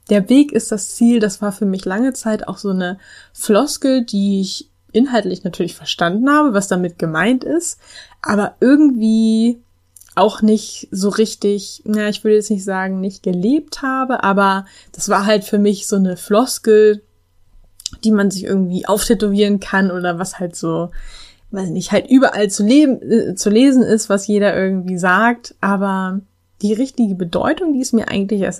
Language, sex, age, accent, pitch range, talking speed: German, female, 10-29, German, 190-220 Hz, 175 wpm